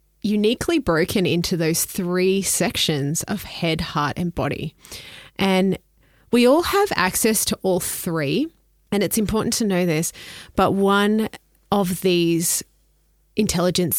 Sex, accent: female, Australian